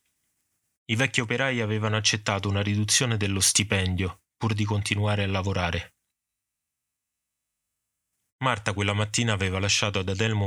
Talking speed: 120 wpm